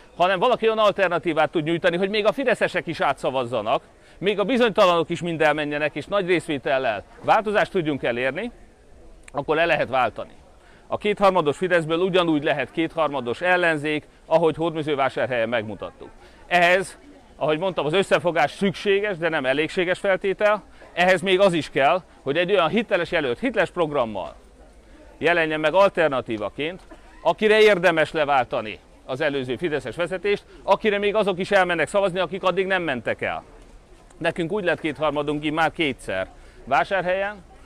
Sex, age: male, 40-59